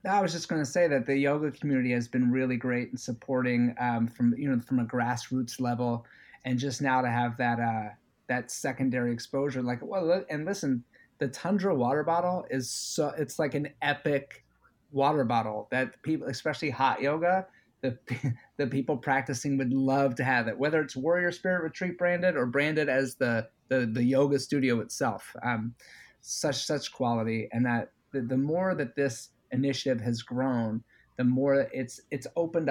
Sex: male